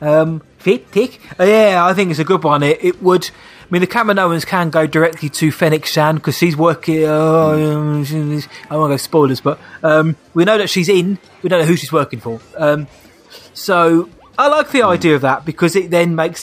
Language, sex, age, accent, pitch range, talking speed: English, male, 20-39, British, 140-170 Hz, 195 wpm